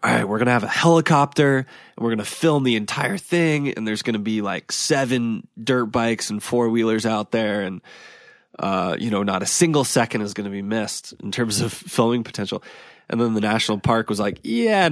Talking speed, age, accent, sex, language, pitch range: 225 wpm, 20-39, American, male, English, 105-125 Hz